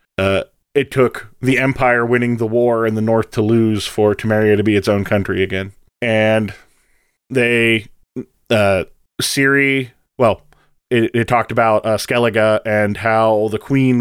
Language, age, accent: English, 20-39, American